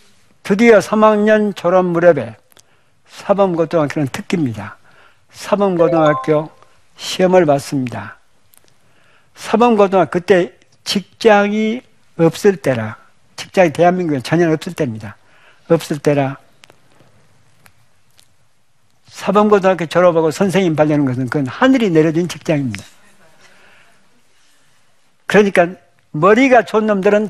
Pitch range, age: 135-200 Hz, 60-79